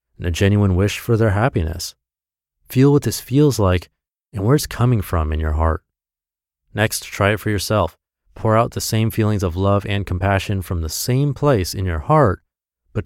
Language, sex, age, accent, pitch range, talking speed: English, male, 30-49, American, 80-120 Hz, 195 wpm